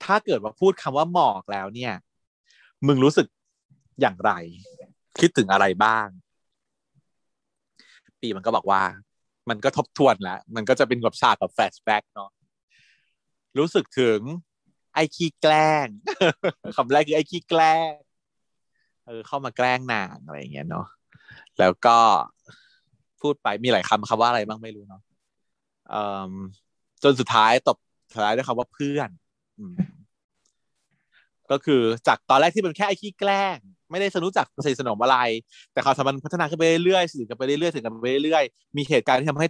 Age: 20-39